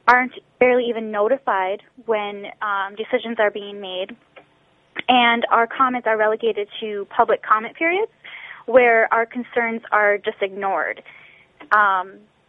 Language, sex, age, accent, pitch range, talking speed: English, female, 10-29, American, 205-235 Hz, 125 wpm